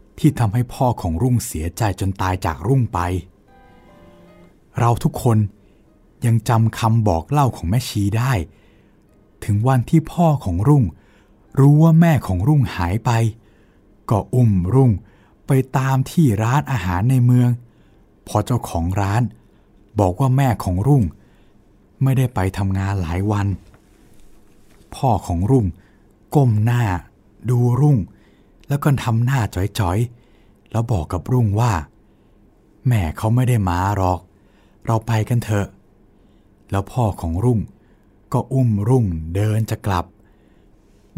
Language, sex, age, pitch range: Thai, male, 60-79, 95-120 Hz